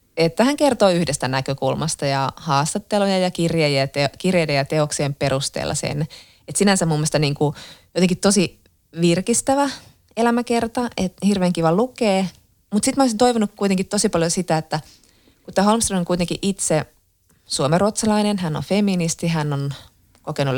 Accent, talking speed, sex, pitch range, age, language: native, 145 wpm, female, 150-200 Hz, 20-39, Finnish